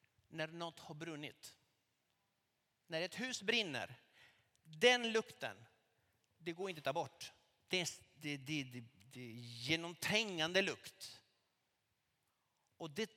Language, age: Swedish, 50-69